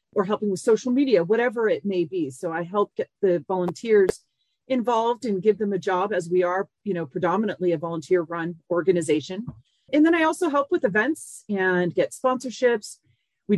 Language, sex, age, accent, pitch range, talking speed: English, female, 40-59, American, 175-235 Hz, 185 wpm